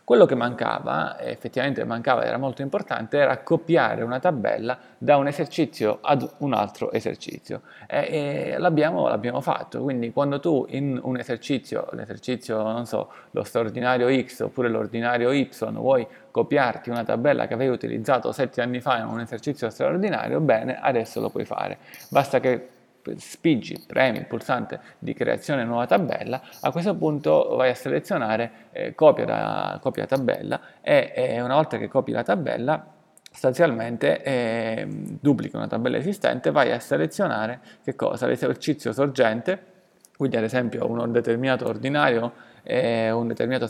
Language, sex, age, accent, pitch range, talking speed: Italian, male, 30-49, native, 115-140 Hz, 150 wpm